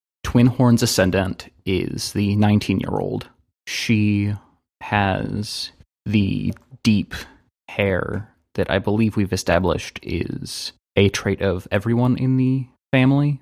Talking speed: 115 wpm